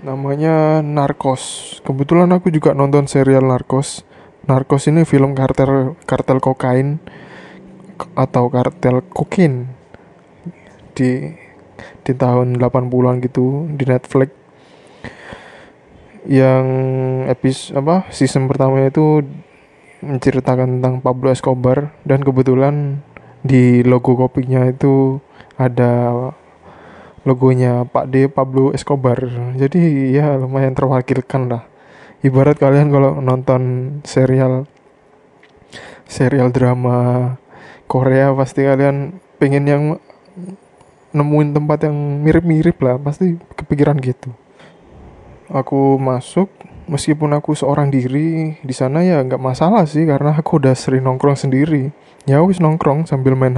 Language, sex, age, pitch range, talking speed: Indonesian, male, 20-39, 130-145 Hz, 105 wpm